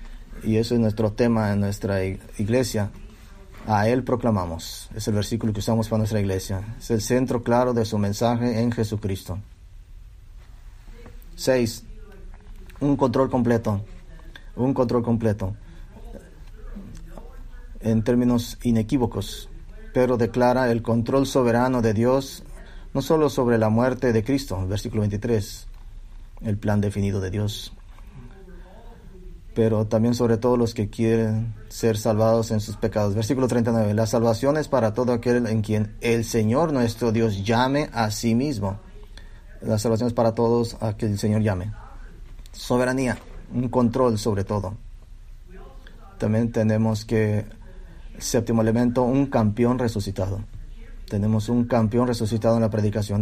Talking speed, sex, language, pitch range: 135 wpm, male, English, 105-120 Hz